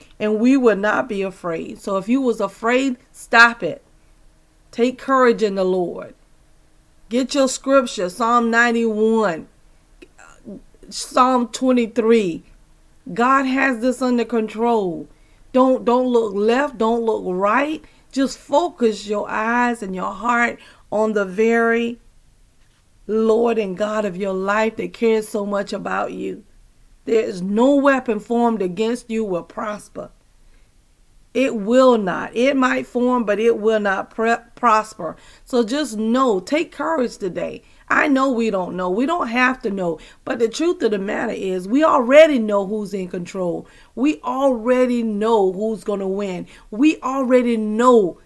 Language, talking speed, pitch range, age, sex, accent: English, 145 wpm, 205-250 Hz, 40-59, female, American